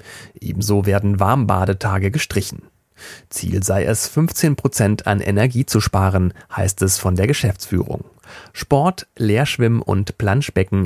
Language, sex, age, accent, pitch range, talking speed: German, male, 40-59, German, 95-120 Hz, 120 wpm